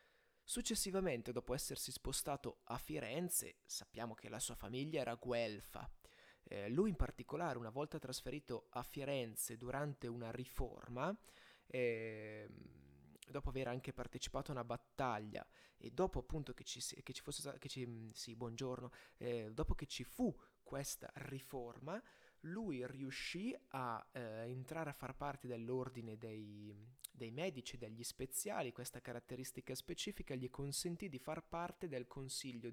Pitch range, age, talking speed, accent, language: 120-150 Hz, 20-39, 140 wpm, native, Italian